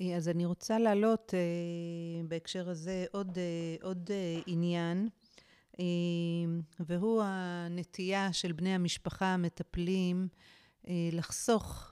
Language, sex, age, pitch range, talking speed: Hebrew, female, 40-59, 165-180 Hz, 105 wpm